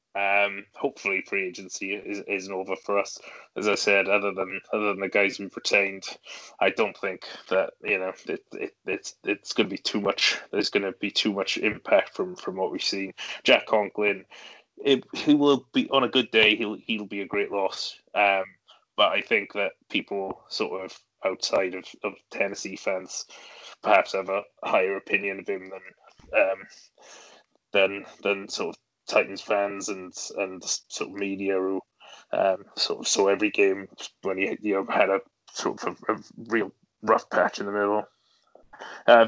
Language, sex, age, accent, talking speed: English, male, 20-39, British, 180 wpm